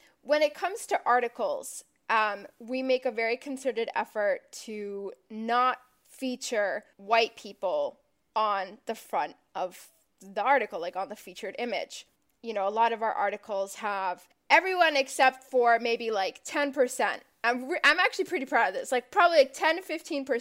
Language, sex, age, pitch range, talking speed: English, female, 10-29, 225-280 Hz, 155 wpm